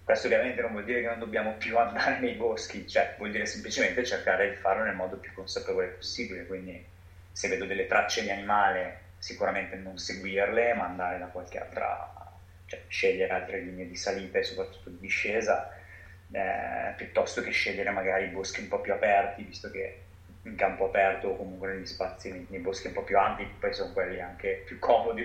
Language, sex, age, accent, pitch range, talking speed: Italian, male, 30-49, native, 90-115 Hz, 190 wpm